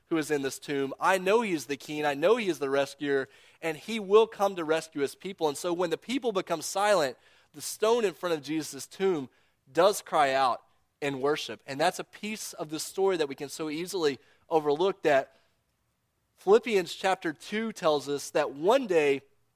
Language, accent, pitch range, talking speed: English, American, 150-210 Hz, 205 wpm